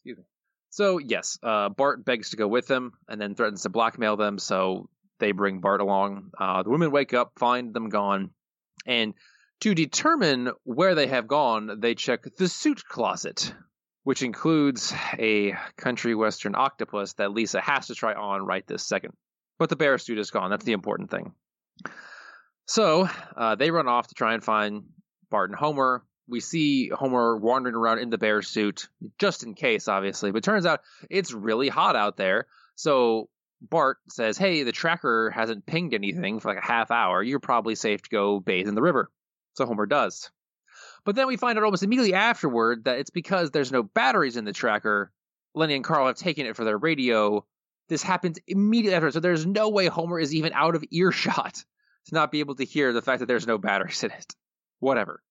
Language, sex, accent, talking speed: English, male, American, 195 wpm